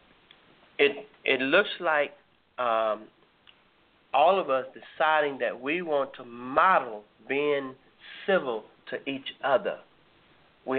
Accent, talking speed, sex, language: American, 110 wpm, male, English